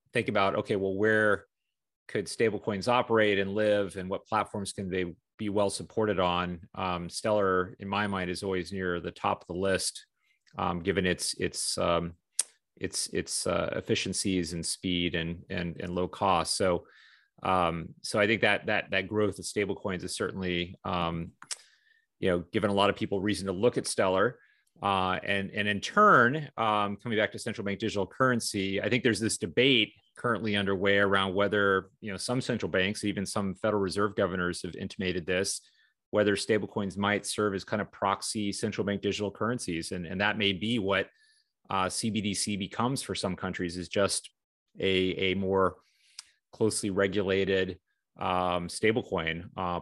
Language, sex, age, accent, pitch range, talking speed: English, male, 30-49, American, 90-105 Hz, 175 wpm